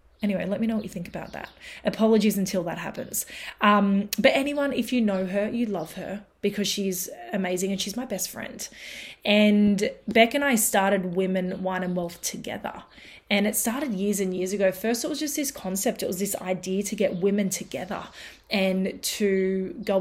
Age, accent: 20-39, Australian